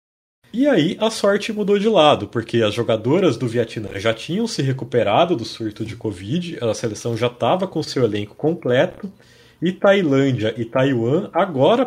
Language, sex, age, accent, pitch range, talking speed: Portuguese, male, 30-49, Brazilian, 115-165 Hz, 165 wpm